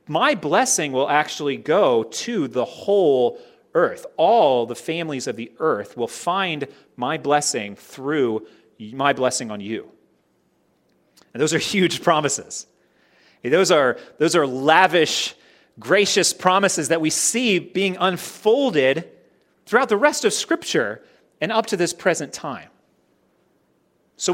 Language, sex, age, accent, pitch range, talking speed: English, male, 30-49, American, 145-220 Hz, 130 wpm